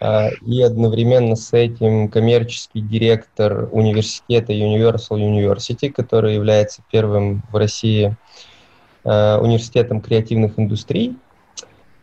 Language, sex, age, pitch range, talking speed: Russian, male, 20-39, 105-115 Hz, 85 wpm